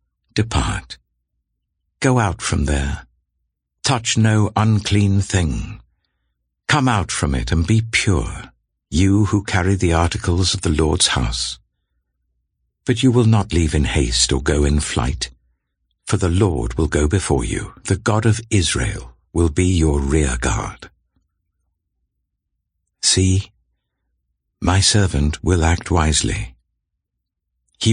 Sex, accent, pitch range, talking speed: male, British, 70-105 Hz, 125 wpm